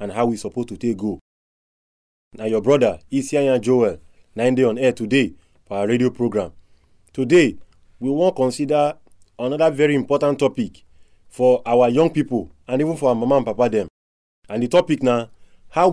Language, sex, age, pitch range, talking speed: English, male, 30-49, 95-140 Hz, 175 wpm